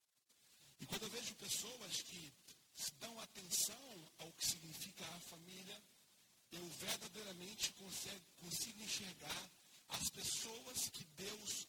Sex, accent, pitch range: male, Brazilian, 160-200 Hz